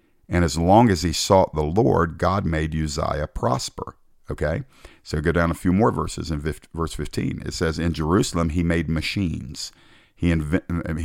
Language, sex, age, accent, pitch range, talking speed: English, male, 50-69, American, 75-90 Hz, 175 wpm